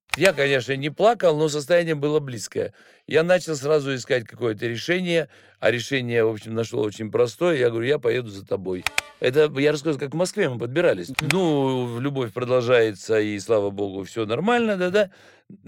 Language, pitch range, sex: Russian, 110-155 Hz, male